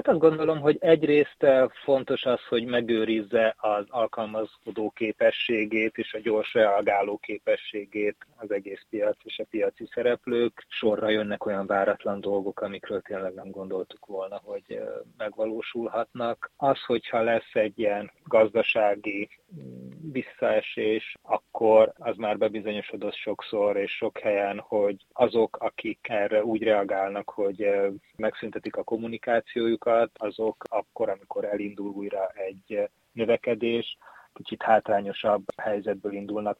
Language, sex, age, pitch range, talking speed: Hungarian, male, 30-49, 105-120 Hz, 120 wpm